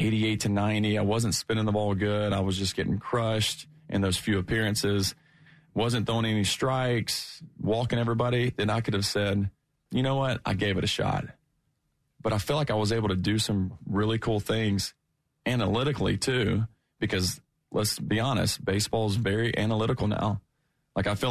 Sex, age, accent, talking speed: male, 30-49, American, 180 wpm